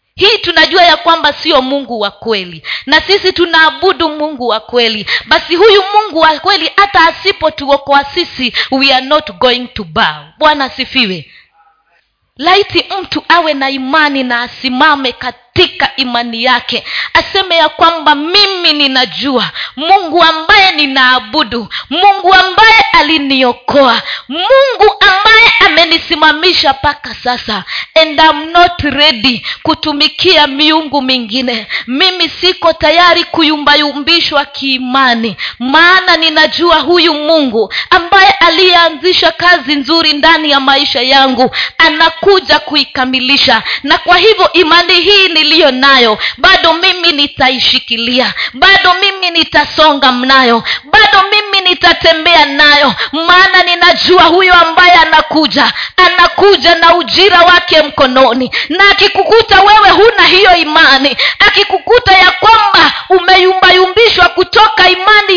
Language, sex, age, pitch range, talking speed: Swahili, female, 30-49, 270-365 Hz, 110 wpm